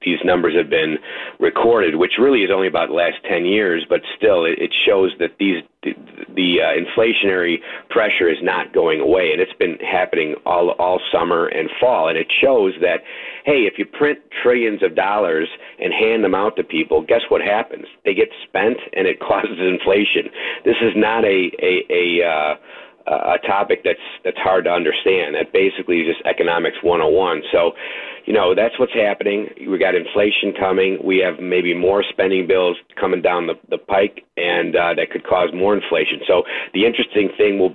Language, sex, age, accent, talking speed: English, male, 50-69, American, 185 wpm